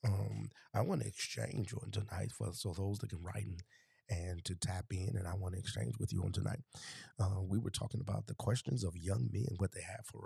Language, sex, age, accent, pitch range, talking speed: English, male, 30-49, American, 95-115 Hz, 240 wpm